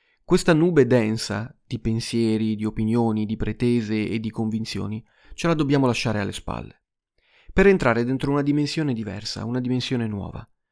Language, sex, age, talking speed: Italian, male, 30-49, 150 wpm